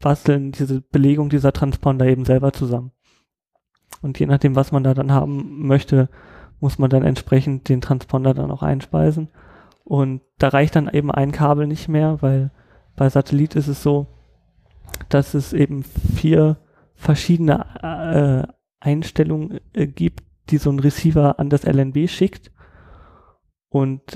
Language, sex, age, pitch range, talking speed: German, male, 30-49, 130-145 Hz, 145 wpm